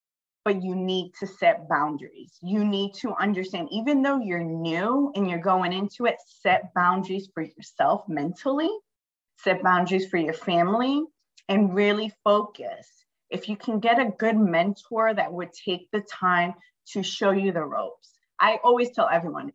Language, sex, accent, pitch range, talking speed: English, female, American, 180-235 Hz, 165 wpm